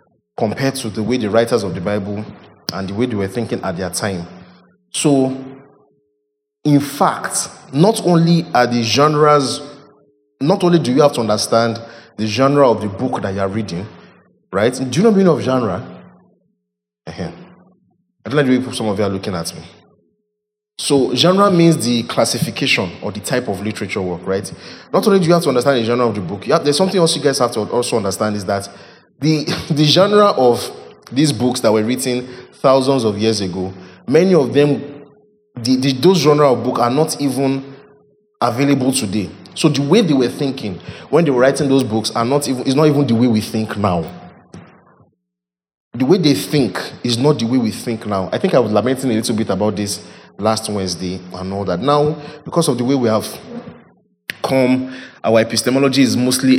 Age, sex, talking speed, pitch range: 30-49, male, 195 wpm, 110-145 Hz